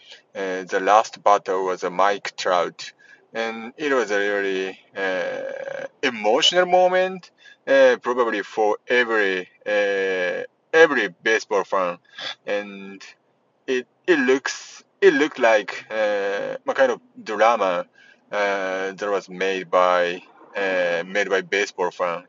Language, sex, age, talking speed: English, male, 30-49, 125 wpm